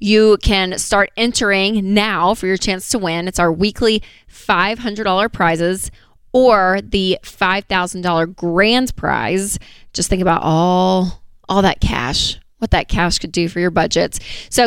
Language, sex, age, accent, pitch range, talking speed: English, female, 20-39, American, 180-210 Hz, 145 wpm